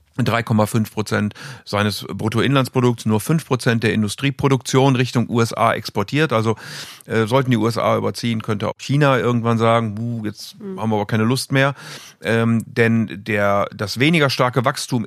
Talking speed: 140 wpm